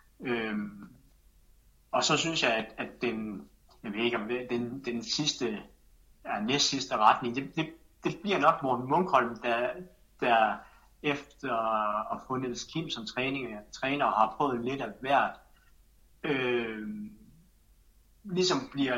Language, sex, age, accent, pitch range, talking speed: Danish, male, 60-79, native, 115-140 Hz, 140 wpm